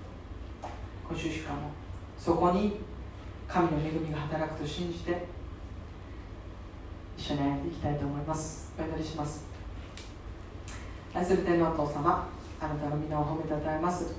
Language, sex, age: Japanese, female, 40-59